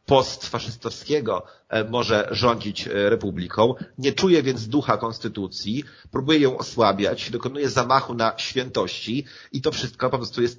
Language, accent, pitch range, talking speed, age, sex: Polish, native, 105-135 Hz, 130 wpm, 40-59, male